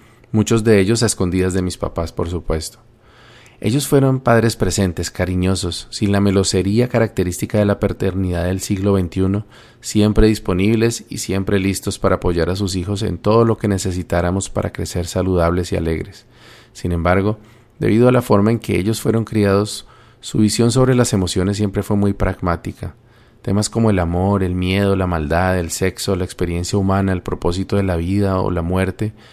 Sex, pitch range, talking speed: male, 95-115 Hz, 175 wpm